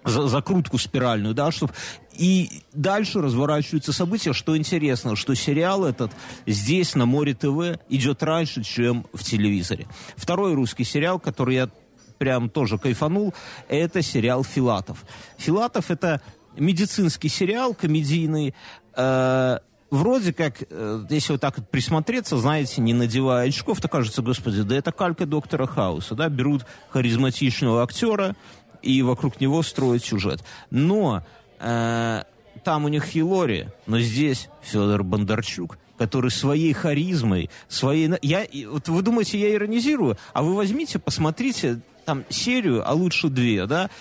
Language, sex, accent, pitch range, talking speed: Russian, male, native, 125-170 Hz, 130 wpm